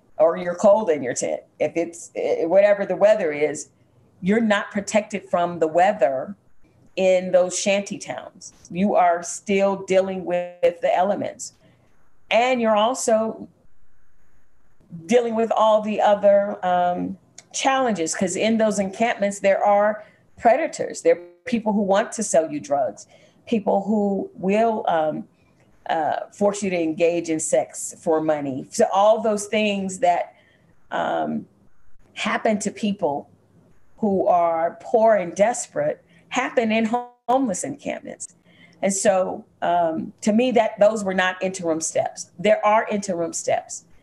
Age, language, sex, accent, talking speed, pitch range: 40-59, English, female, American, 140 wpm, 175-220 Hz